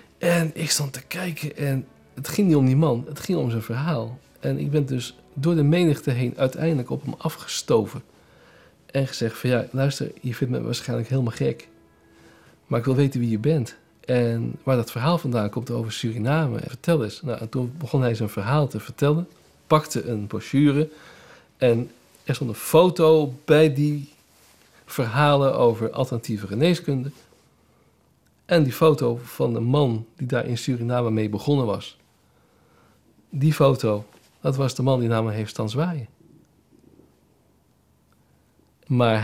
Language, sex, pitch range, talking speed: Dutch, male, 115-150 Hz, 165 wpm